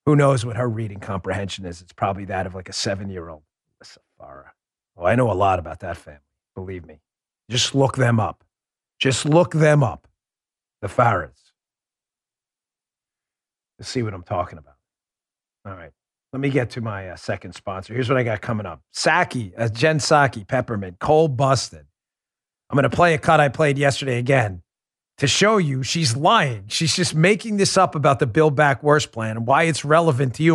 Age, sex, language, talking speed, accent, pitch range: 40-59, male, English, 190 wpm, American, 110-155 Hz